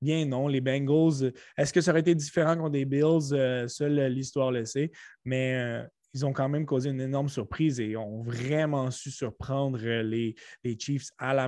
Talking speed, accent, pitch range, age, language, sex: 200 wpm, Canadian, 130-155 Hz, 20-39, French, male